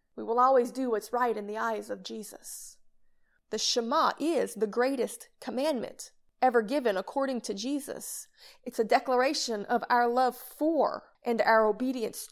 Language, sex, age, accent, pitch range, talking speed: English, female, 30-49, American, 225-275 Hz, 155 wpm